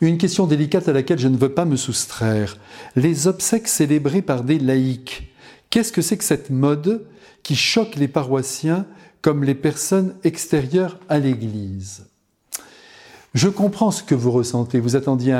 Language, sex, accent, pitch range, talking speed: French, male, French, 125-160 Hz, 160 wpm